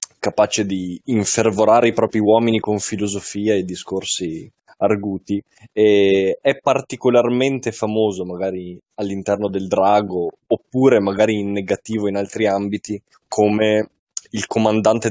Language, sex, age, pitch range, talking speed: Italian, male, 20-39, 100-115 Hz, 115 wpm